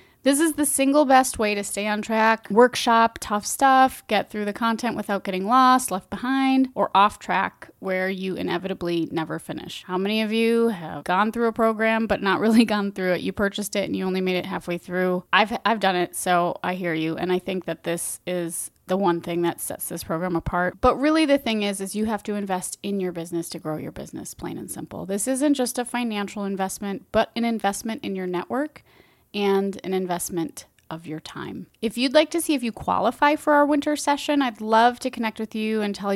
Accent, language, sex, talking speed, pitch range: American, English, female, 225 wpm, 180-230 Hz